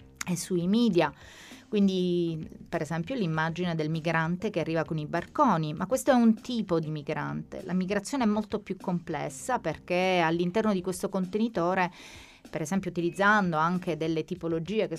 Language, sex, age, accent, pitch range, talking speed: Italian, female, 30-49, native, 165-210 Hz, 155 wpm